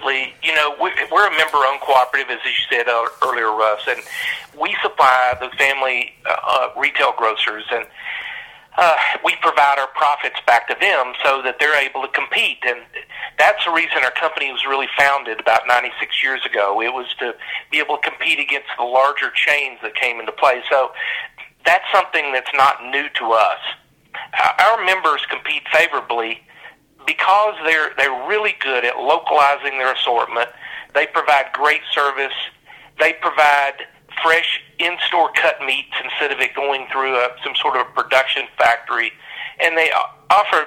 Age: 50-69